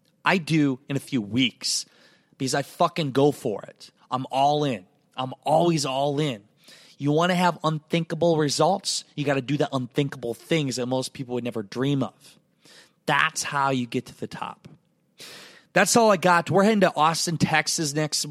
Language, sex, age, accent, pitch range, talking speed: English, male, 20-39, American, 135-170 Hz, 185 wpm